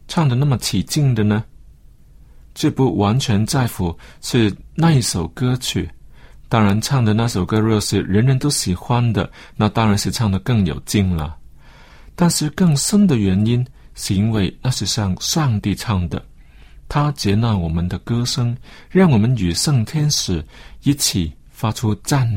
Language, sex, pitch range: Chinese, male, 95-130 Hz